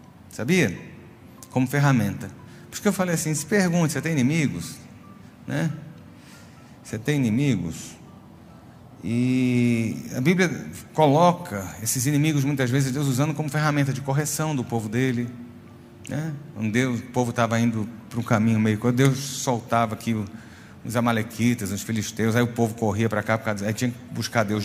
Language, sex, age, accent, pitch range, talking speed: Portuguese, male, 40-59, Brazilian, 115-145 Hz, 150 wpm